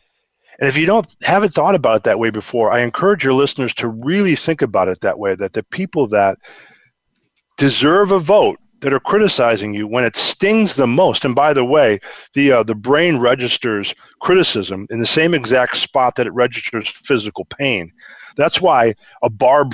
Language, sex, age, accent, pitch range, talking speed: English, male, 40-59, American, 115-165 Hz, 190 wpm